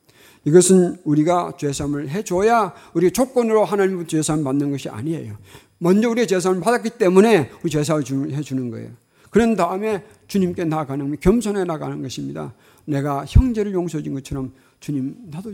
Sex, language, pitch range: male, Korean, 125-175 Hz